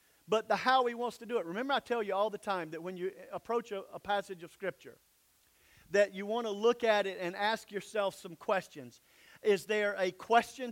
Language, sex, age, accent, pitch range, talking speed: English, male, 50-69, American, 190-235 Hz, 225 wpm